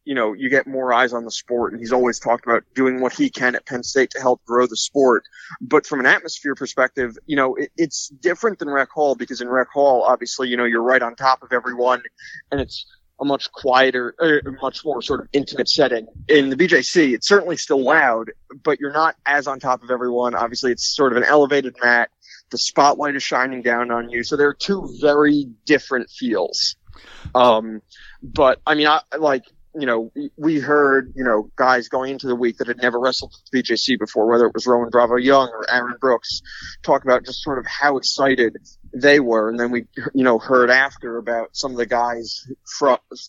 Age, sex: 20-39, male